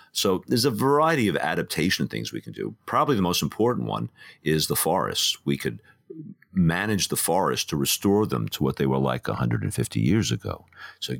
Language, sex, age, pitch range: English, male, 50-69, 70-95 Hz